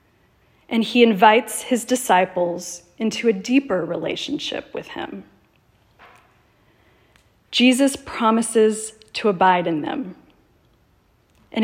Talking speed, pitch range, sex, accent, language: 95 wpm, 190-250 Hz, female, American, English